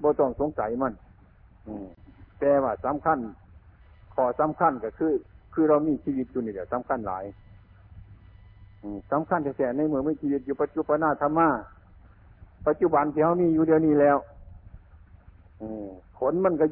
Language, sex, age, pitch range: Thai, male, 60-79, 95-150 Hz